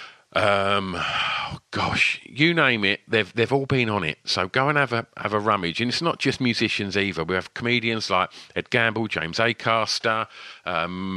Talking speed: 190 wpm